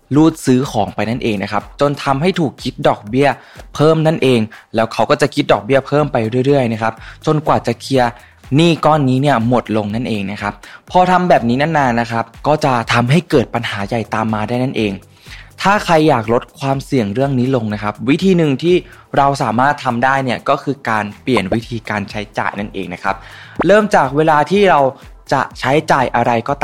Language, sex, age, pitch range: Thai, male, 20-39, 110-150 Hz